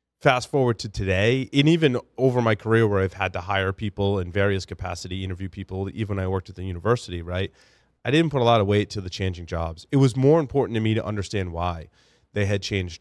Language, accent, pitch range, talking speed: English, American, 95-120 Hz, 235 wpm